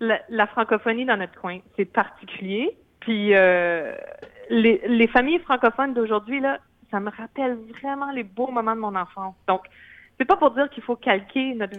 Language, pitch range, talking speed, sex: French, 195-240 Hz, 180 wpm, female